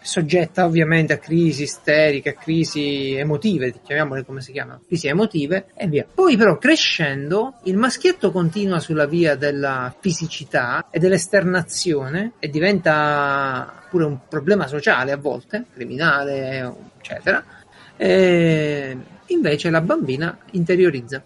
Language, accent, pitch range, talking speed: Italian, native, 150-200 Hz, 120 wpm